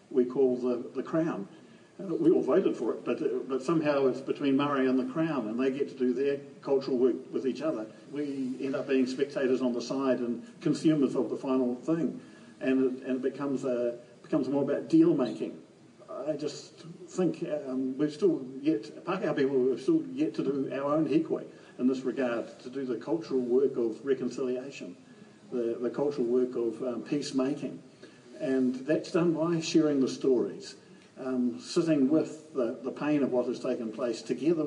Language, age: English, 50-69